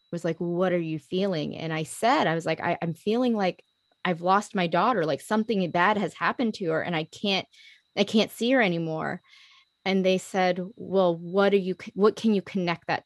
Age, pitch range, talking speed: 20-39, 170-210 Hz, 210 wpm